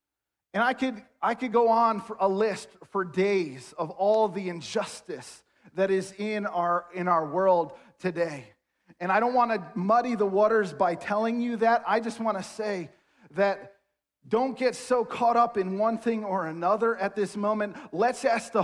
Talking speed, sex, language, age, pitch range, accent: 185 wpm, male, English, 40-59, 205-260 Hz, American